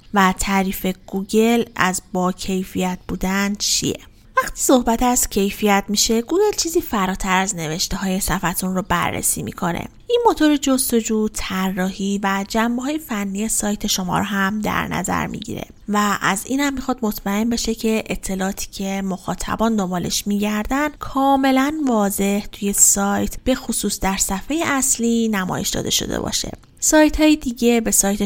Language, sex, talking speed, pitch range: Persian, female, 145 wpm, 190-240 Hz